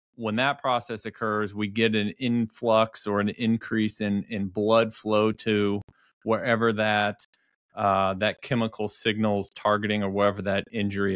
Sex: male